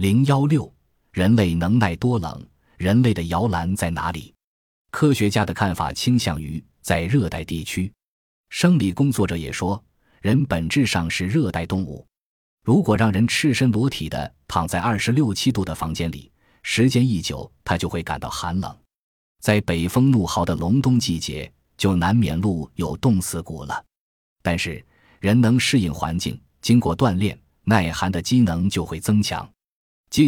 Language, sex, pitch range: Chinese, male, 85-120 Hz